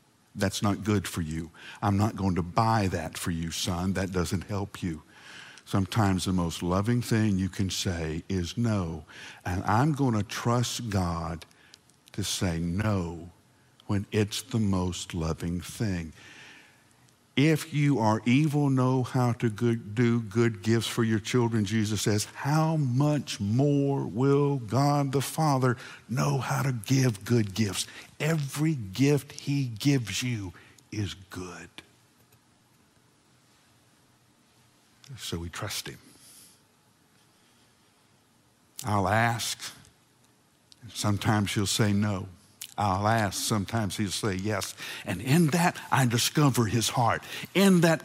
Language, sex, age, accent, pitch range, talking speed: English, male, 60-79, American, 100-140 Hz, 130 wpm